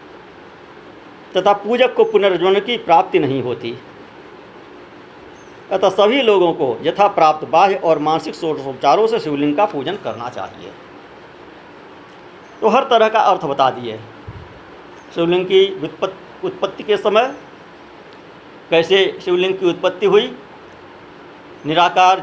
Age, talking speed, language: 50-69, 120 wpm, Hindi